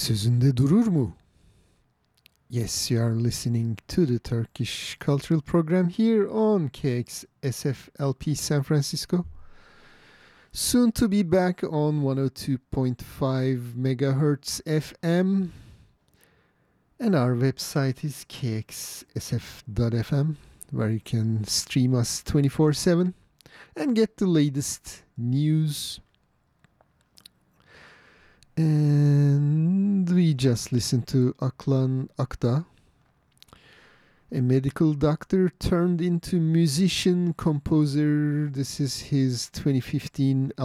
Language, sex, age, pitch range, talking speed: English, male, 50-69, 125-165 Hz, 85 wpm